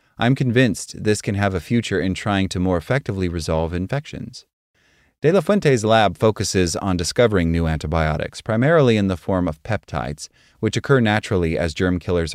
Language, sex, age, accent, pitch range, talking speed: English, male, 30-49, American, 90-120 Hz, 170 wpm